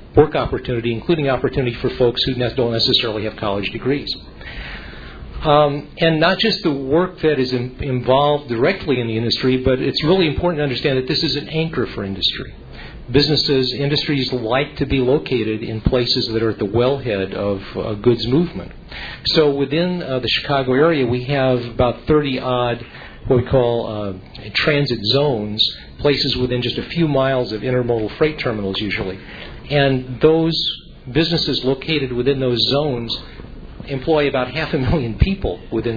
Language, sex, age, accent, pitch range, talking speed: English, male, 50-69, American, 115-145 Hz, 160 wpm